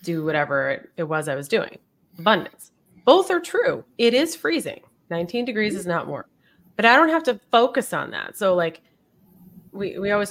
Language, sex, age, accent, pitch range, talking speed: English, female, 30-49, American, 165-225 Hz, 185 wpm